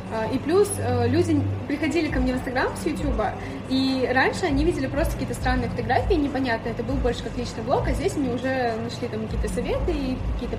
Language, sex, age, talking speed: Russian, female, 20-39, 200 wpm